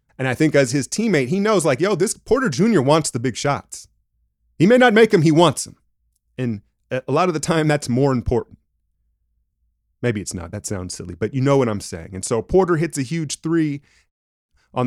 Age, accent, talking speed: 30-49, American, 220 wpm